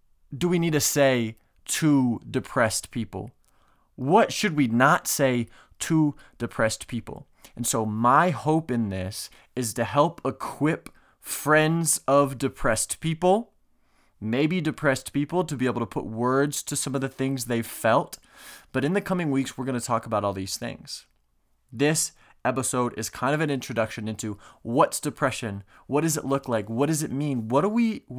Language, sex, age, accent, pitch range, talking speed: English, male, 20-39, American, 115-150 Hz, 175 wpm